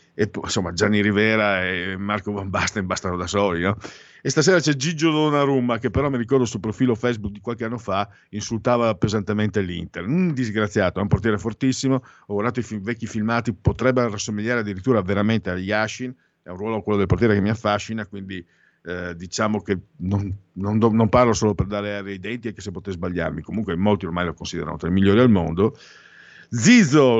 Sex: male